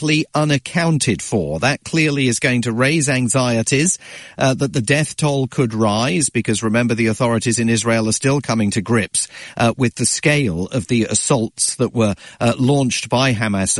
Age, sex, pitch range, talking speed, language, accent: 40-59, male, 120-150 Hz, 175 wpm, English, British